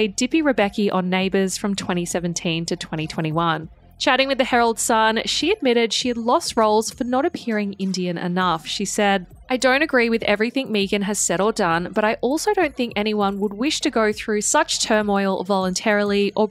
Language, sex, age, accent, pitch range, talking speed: English, female, 20-39, Australian, 190-240 Hz, 185 wpm